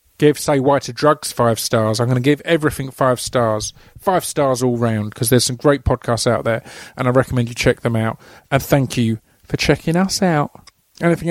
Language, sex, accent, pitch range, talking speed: English, male, British, 120-145 Hz, 210 wpm